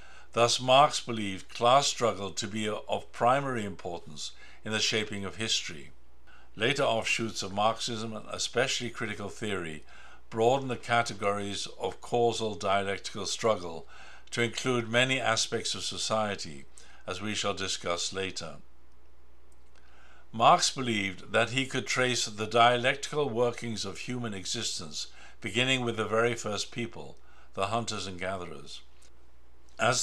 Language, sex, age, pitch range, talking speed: English, male, 60-79, 95-120 Hz, 130 wpm